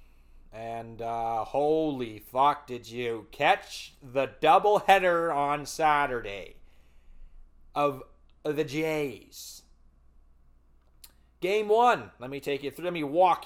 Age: 30-49